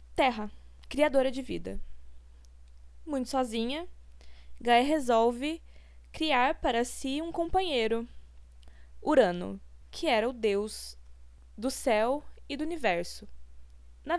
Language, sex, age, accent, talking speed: Portuguese, female, 20-39, Brazilian, 100 wpm